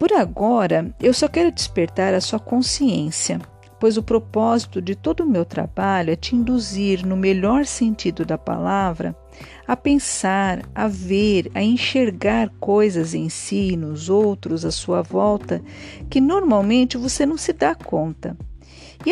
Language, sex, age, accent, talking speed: Portuguese, female, 50-69, Brazilian, 150 wpm